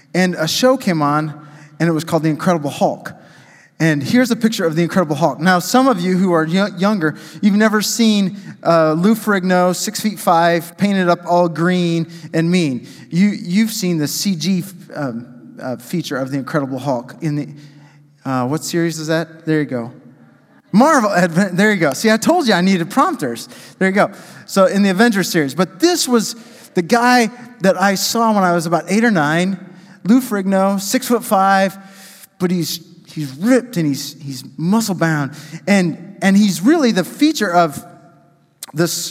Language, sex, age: English, male, 30-49